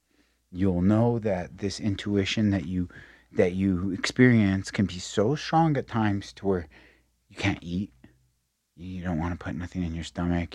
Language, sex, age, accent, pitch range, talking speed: English, male, 30-49, American, 85-120 Hz, 170 wpm